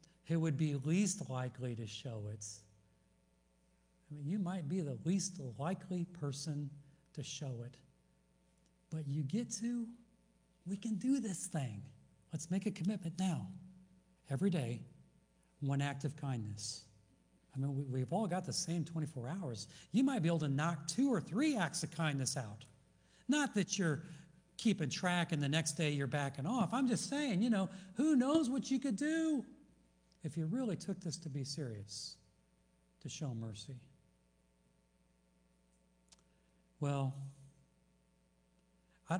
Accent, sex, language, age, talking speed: American, male, English, 60-79, 150 wpm